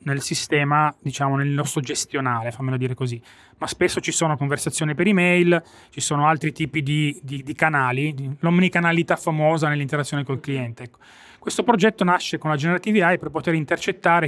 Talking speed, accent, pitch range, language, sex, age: 165 wpm, native, 140-180 Hz, Italian, male, 20-39